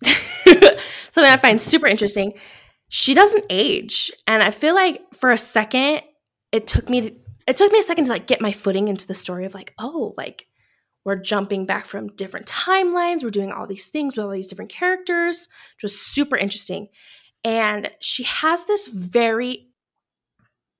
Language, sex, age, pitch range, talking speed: English, female, 20-39, 195-270 Hz, 175 wpm